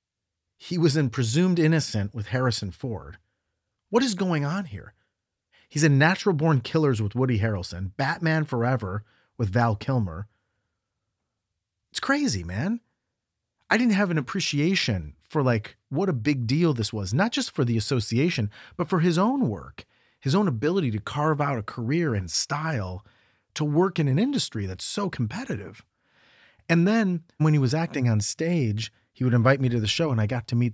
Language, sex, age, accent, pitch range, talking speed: English, male, 40-59, American, 105-155 Hz, 175 wpm